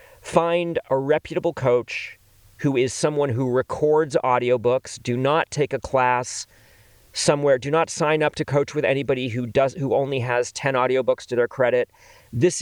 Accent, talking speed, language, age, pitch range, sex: American, 165 wpm, English, 40-59, 125-160 Hz, male